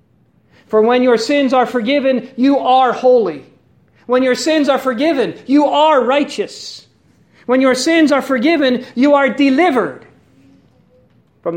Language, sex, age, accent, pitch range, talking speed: English, male, 50-69, American, 185-270 Hz, 135 wpm